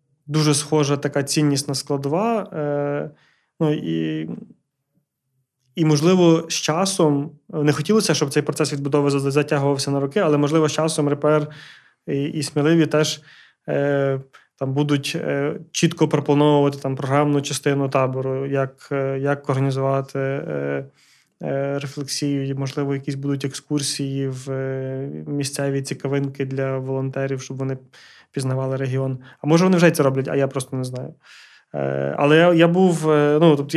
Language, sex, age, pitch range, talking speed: Ukrainian, male, 20-39, 135-155 Hz, 140 wpm